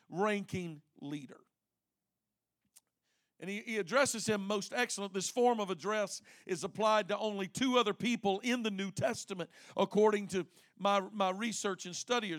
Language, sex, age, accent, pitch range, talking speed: English, male, 50-69, American, 185-230 Hz, 150 wpm